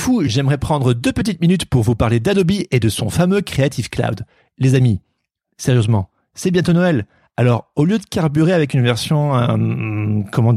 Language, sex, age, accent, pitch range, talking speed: French, male, 40-59, French, 115-165 Hz, 180 wpm